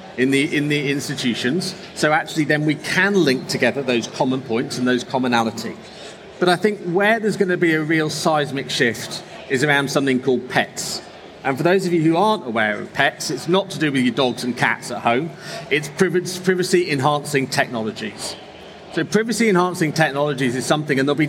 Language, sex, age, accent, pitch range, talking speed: English, male, 40-59, British, 130-180 Hz, 185 wpm